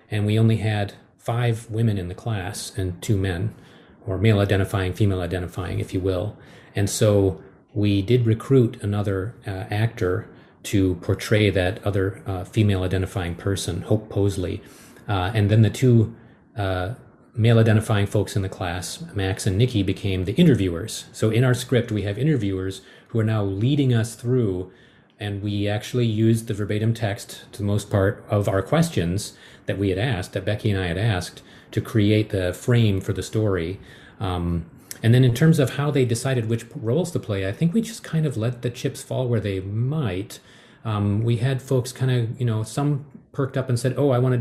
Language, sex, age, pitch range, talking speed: English, male, 30-49, 100-125 Hz, 195 wpm